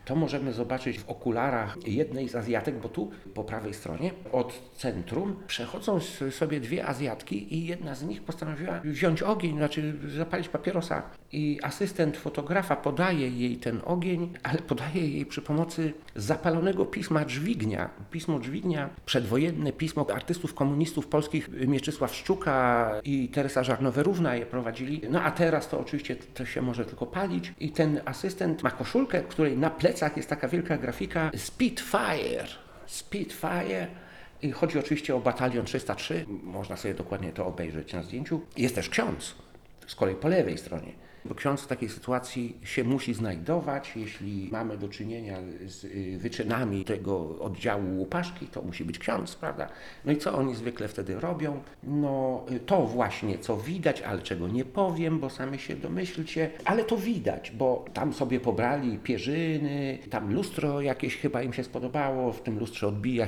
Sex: male